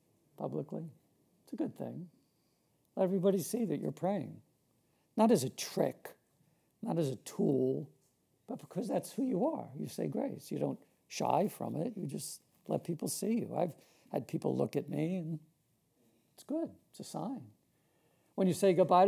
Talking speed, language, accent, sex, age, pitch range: 175 wpm, English, American, male, 70-89, 155-195 Hz